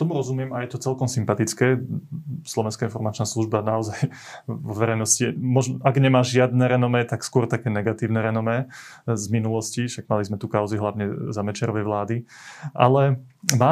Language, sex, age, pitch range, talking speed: Slovak, male, 20-39, 110-130 Hz, 155 wpm